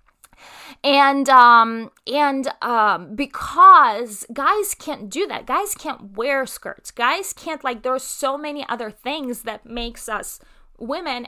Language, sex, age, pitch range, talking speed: English, female, 20-39, 210-280 Hz, 135 wpm